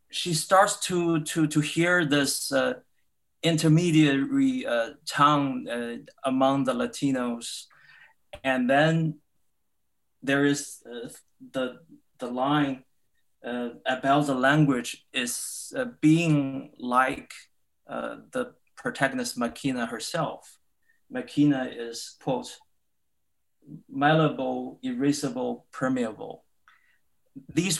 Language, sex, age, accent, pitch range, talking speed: English, male, 30-49, Chinese, 130-165 Hz, 95 wpm